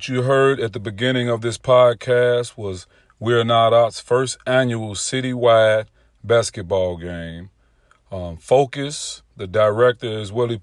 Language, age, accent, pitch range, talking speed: English, 40-59, American, 105-120 Hz, 135 wpm